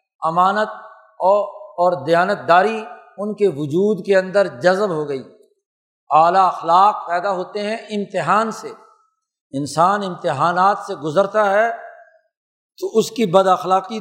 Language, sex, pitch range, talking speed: Urdu, male, 175-215 Hz, 130 wpm